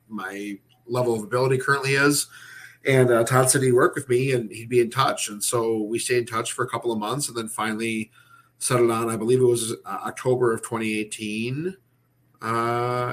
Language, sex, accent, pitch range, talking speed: English, male, American, 110-125 Hz, 200 wpm